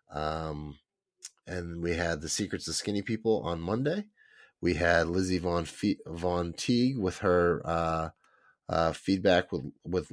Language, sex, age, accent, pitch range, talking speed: English, male, 30-49, American, 85-100 Hz, 150 wpm